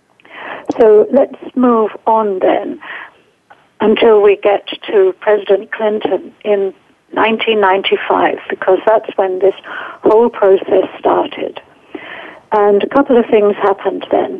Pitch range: 195-275 Hz